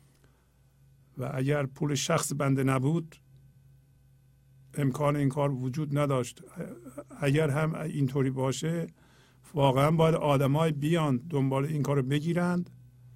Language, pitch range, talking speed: Persian, 110-150 Hz, 110 wpm